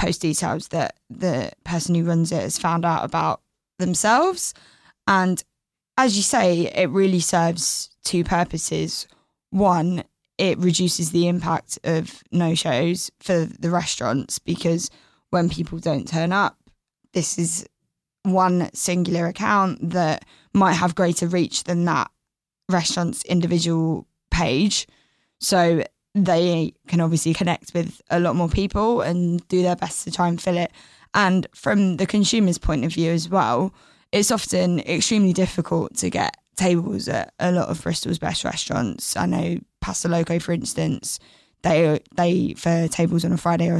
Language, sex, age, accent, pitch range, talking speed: English, female, 10-29, British, 170-185 Hz, 150 wpm